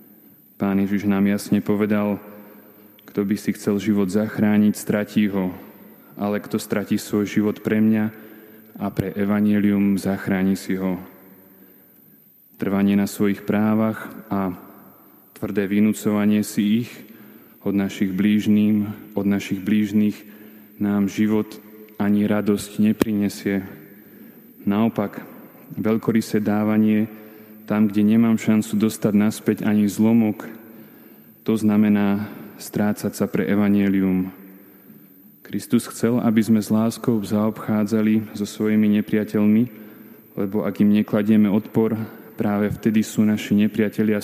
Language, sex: Slovak, male